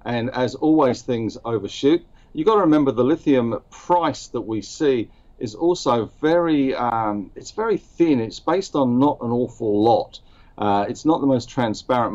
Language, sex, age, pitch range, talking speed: English, male, 50-69, 110-135 Hz, 175 wpm